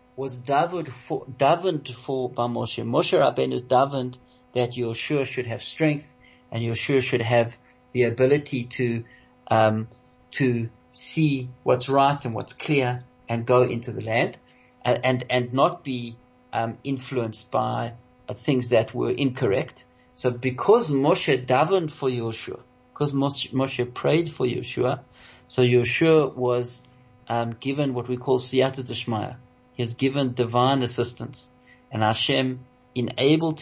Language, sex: English, male